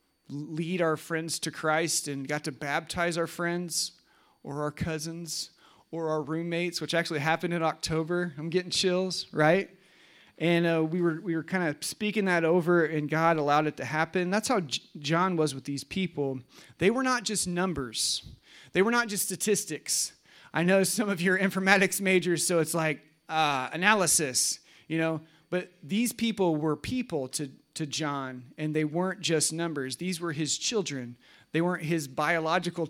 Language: English